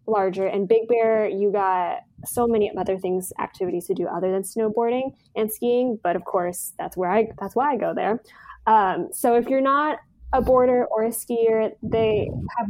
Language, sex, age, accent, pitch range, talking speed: English, female, 10-29, American, 185-225 Hz, 195 wpm